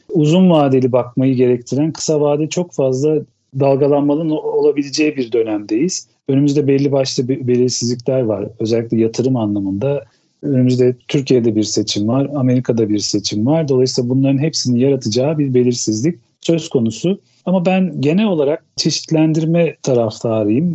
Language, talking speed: Turkish, 125 wpm